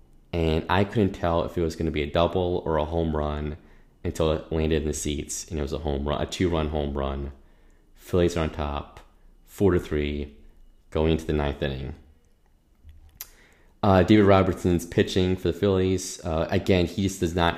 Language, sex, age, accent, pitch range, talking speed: English, male, 20-39, American, 75-95 Hz, 195 wpm